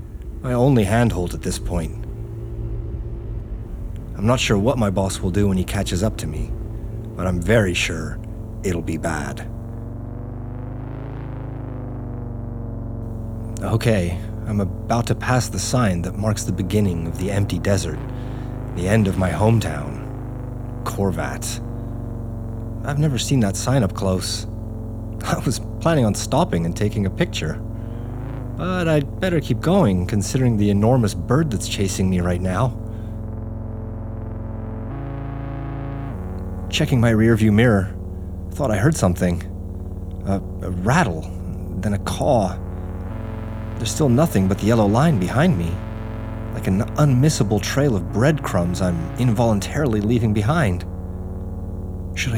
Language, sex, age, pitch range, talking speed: English, male, 30-49, 95-115 Hz, 130 wpm